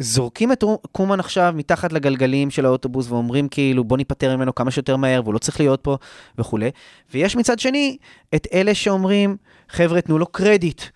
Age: 20-39